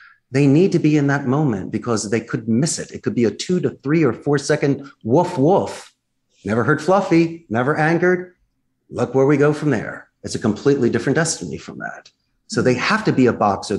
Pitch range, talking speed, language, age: 120-160 Hz, 215 wpm, English, 40-59